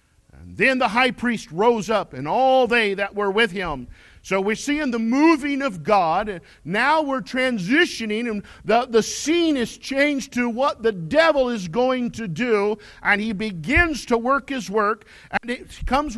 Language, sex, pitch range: English, male, 185-260 Hz